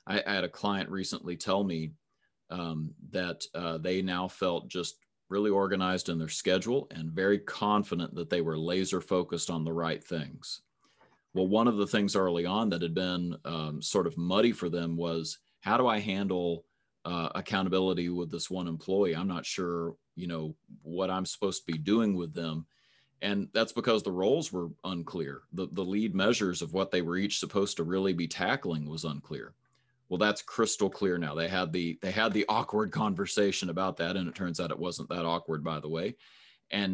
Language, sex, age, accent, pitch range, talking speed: English, male, 30-49, American, 85-100 Hz, 195 wpm